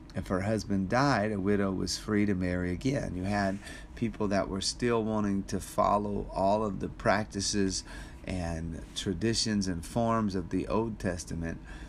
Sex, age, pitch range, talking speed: male, 40-59, 90-110 Hz, 160 wpm